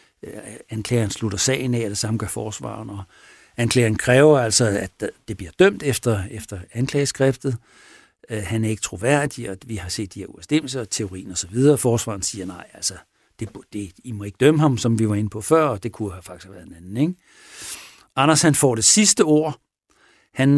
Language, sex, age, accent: Danish, male, 60-79, native